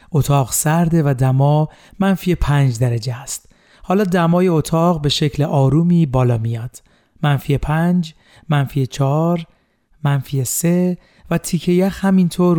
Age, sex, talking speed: 40-59, male, 125 wpm